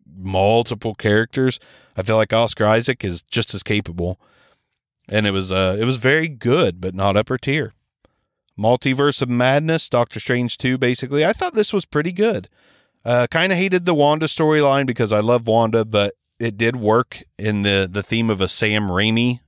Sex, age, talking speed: male, 30-49, 180 wpm